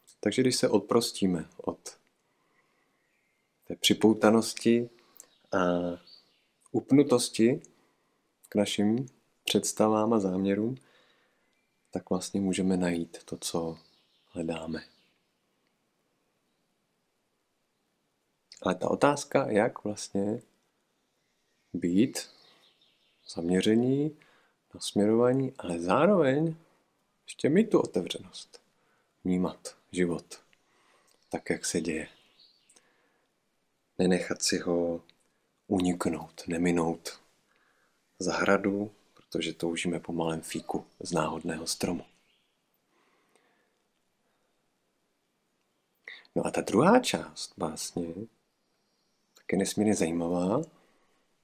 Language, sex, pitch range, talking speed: Czech, male, 85-110 Hz, 75 wpm